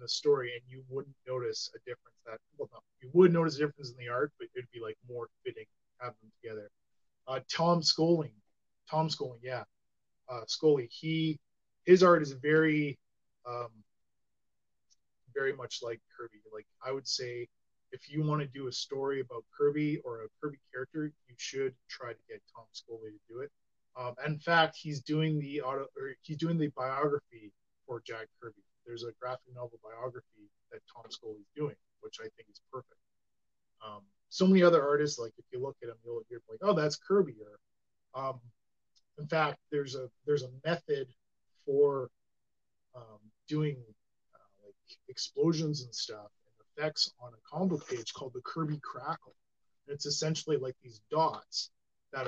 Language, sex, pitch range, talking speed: English, male, 125-165 Hz, 175 wpm